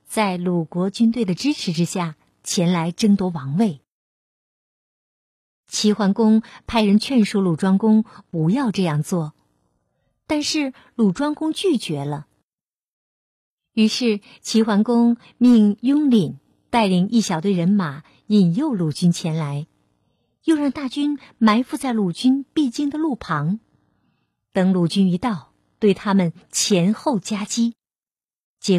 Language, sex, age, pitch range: Chinese, female, 50-69, 175-230 Hz